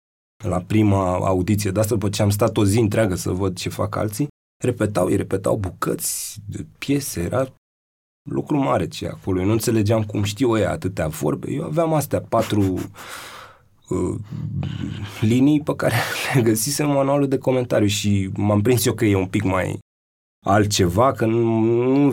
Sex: male